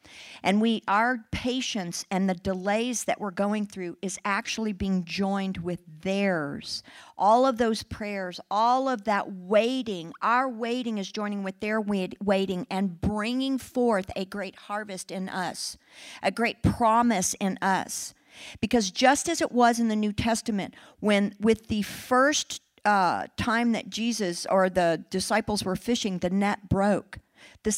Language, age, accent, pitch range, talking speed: English, 50-69, American, 200-250 Hz, 155 wpm